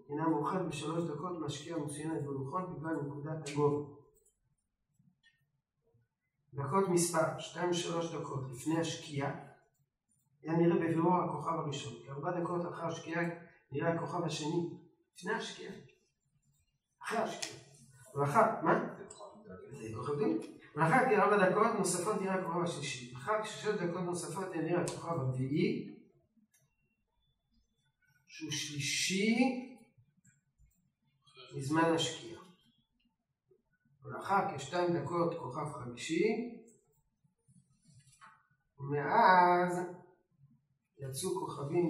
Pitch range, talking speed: 140-175 Hz, 90 wpm